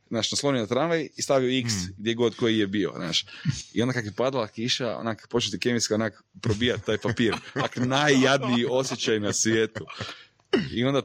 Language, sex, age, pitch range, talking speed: Croatian, male, 30-49, 95-115 Hz, 175 wpm